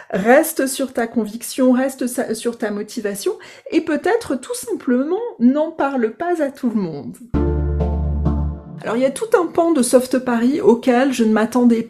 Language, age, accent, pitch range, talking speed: French, 40-59, French, 195-260 Hz, 165 wpm